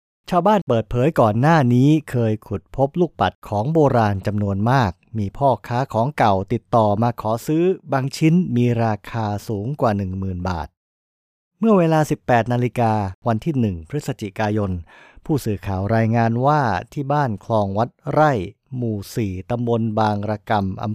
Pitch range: 105-135 Hz